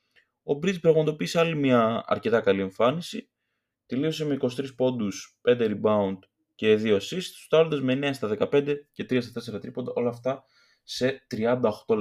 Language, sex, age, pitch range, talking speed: Greek, male, 20-39, 110-155 Hz, 155 wpm